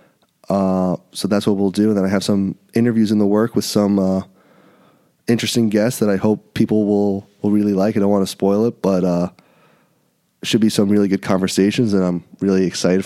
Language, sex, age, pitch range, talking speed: English, male, 20-39, 95-105 Hz, 210 wpm